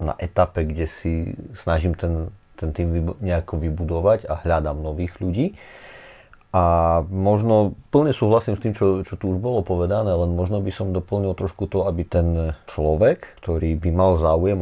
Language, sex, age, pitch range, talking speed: Slovak, male, 30-49, 85-100 Hz, 165 wpm